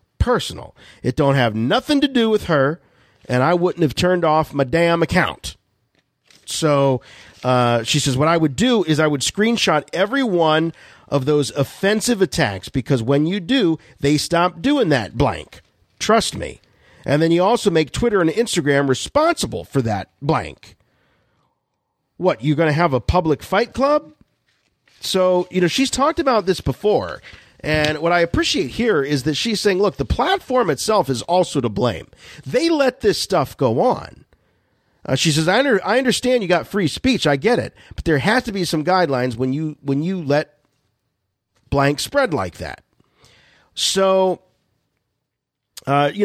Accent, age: American, 50-69